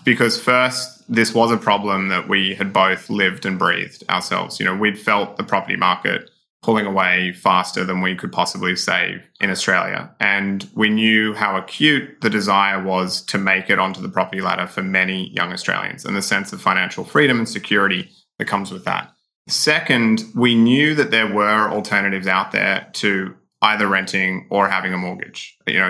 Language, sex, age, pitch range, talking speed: English, male, 20-39, 95-110 Hz, 185 wpm